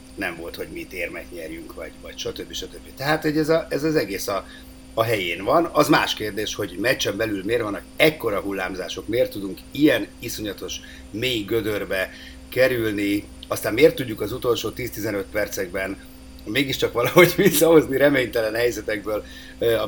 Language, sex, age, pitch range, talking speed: Hungarian, male, 50-69, 90-150 Hz, 155 wpm